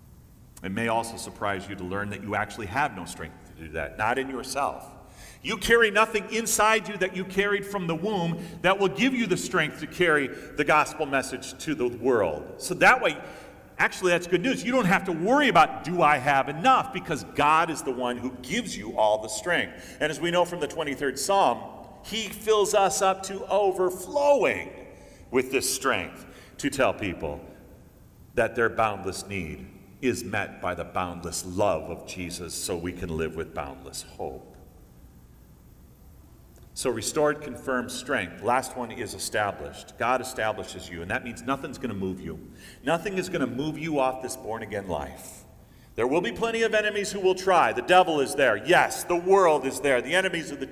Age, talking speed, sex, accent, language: 40-59, 195 wpm, male, American, English